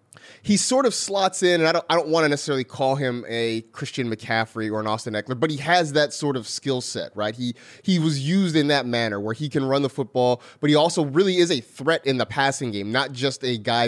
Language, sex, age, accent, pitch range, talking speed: English, male, 30-49, American, 120-170 Hz, 255 wpm